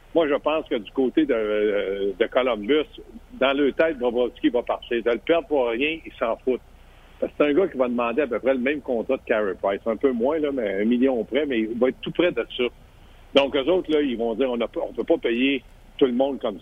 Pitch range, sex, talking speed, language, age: 120-155 Hz, male, 255 wpm, French, 60-79